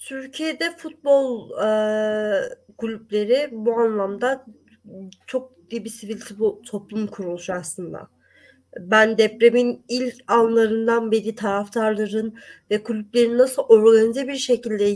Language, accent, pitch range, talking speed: Turkish, native, 205-260 Hz, 105 wpm